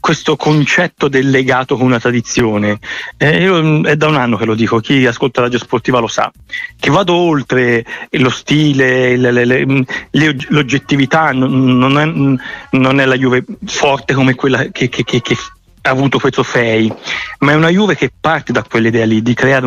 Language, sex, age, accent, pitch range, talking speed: Italian, male, 30-49, native, 120-145 Hz, 185 wpm